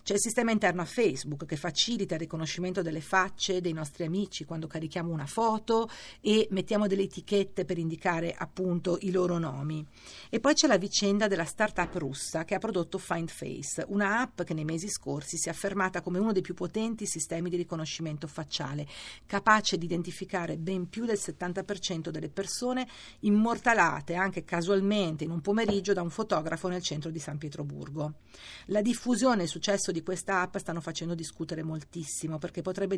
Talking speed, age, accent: 175 wpm, 50-69, native